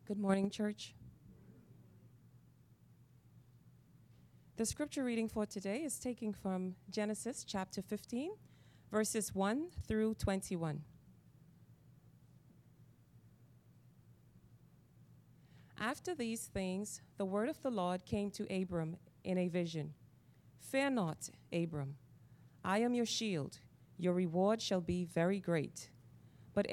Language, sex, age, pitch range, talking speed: English, female, 30-49, 165-225 Hz, 105 wpm